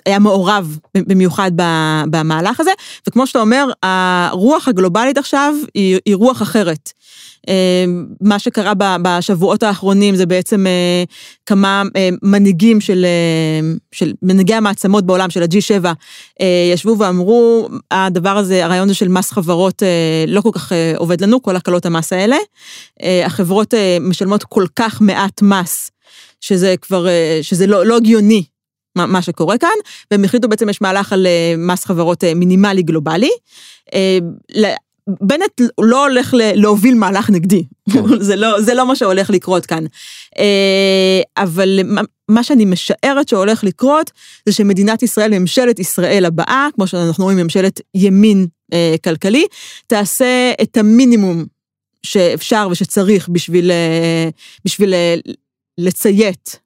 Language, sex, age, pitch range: Hebrew, female, 30-49, 180-215 Hz